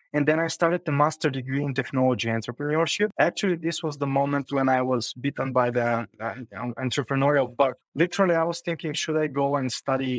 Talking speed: 195 wpm